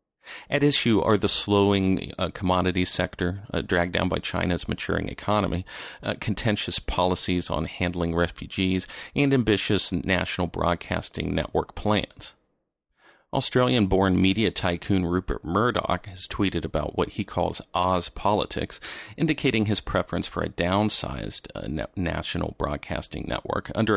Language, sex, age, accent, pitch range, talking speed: English, male, 40-59, American, 85-100 Hz, 130 wpm